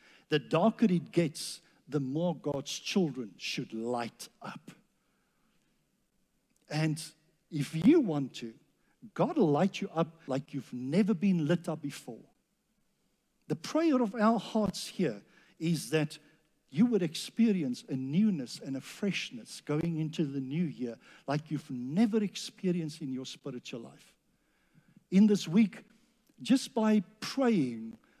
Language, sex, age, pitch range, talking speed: English, male, 60-79, 135-205 Hz, 135 wpm